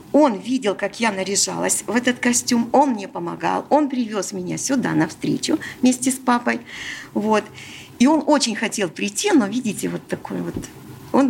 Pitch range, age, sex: 190-265 Hz, 50-69, female